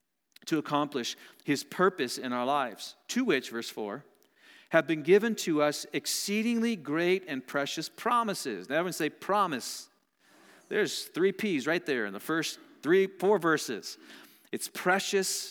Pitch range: 125-180 Hz